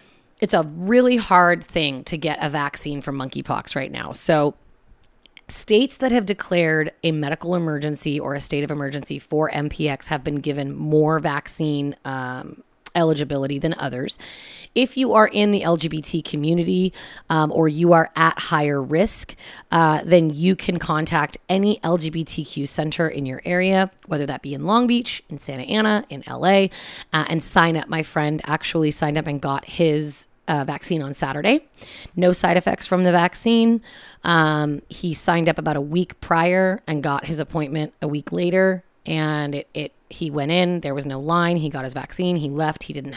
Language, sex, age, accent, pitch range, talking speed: English, female, 30-49, American, 150-185 Hz, 180 wpm